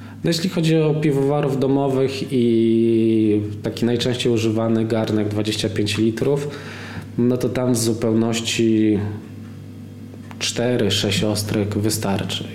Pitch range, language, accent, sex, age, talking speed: 110-125 Hz, Polish, native, male, 20-39, 95 wpm